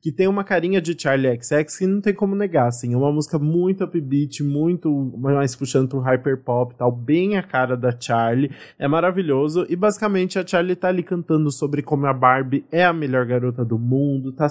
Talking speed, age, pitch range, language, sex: 205 wpm, 20-39, 125-150 Hz, Portuguese, male